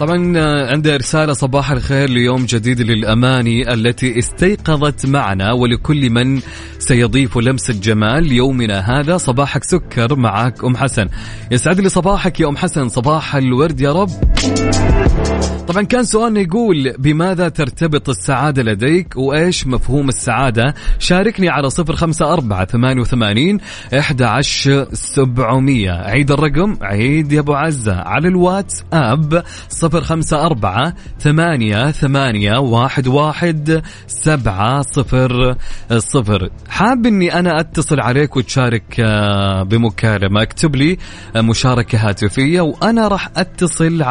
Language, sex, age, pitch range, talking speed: Arabic, male, 20-39, 120-165 Hz, 100 wpm